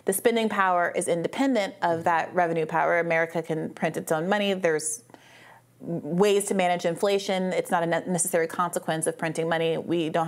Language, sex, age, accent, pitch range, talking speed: English, female, 30-49, American, 175-210 Hz, 175 wpm